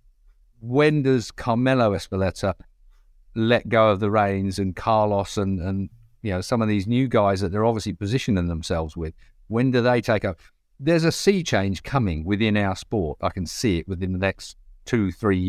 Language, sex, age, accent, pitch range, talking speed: English, male, 50-69, British, 105-145 Hz, 180 wpm